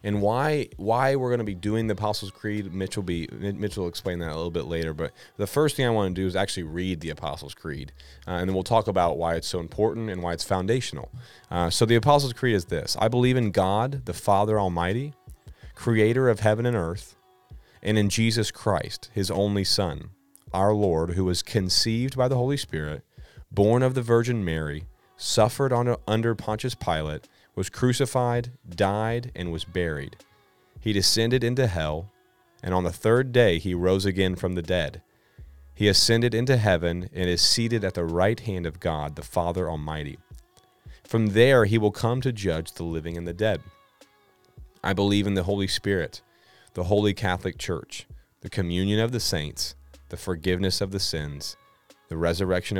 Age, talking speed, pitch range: 30-49, 190 wpm, 85-115 Hz